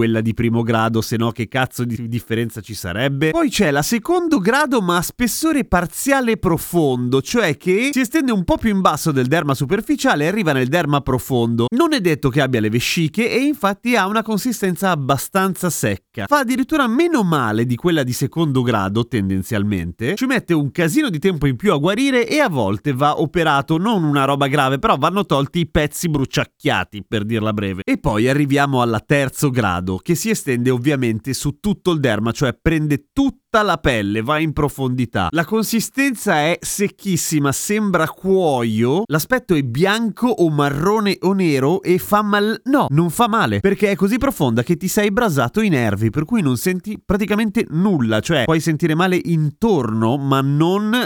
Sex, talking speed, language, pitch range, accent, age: male, 185 wpm, Italian, 130-200 Hz, native, 30-49